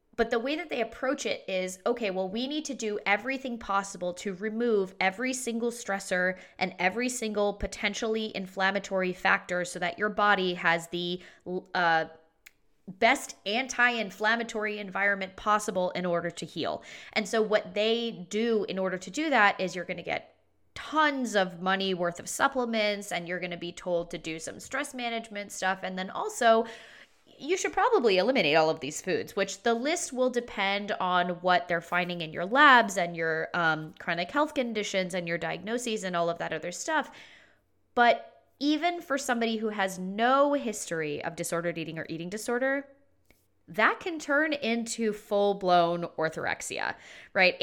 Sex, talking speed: female, 170 wpm